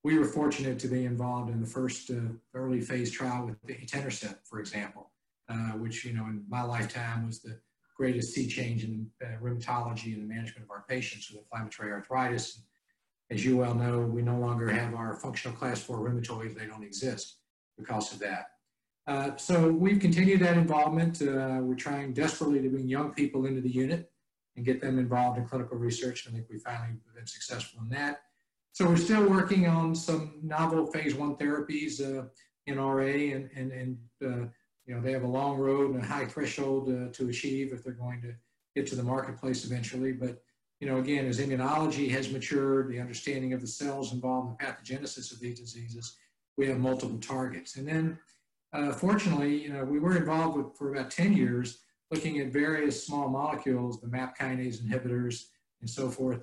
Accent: American